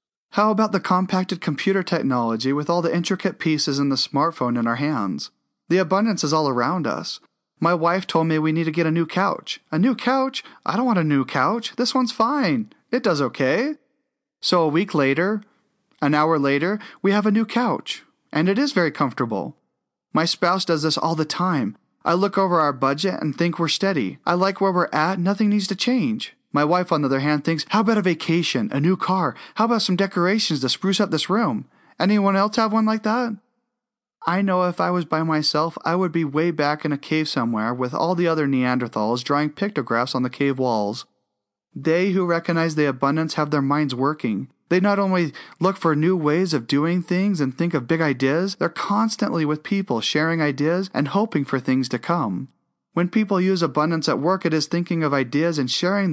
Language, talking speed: English, 210 wpm